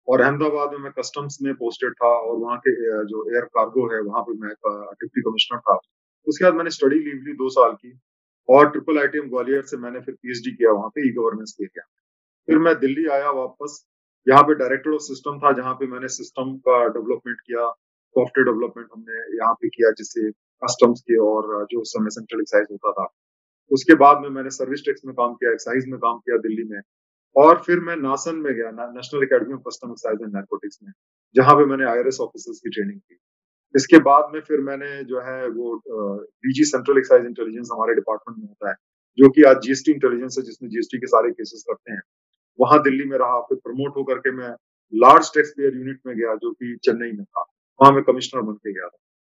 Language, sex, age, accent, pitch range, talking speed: Hindi, male, 30-49, native, 120-150 Hz, 215 wpm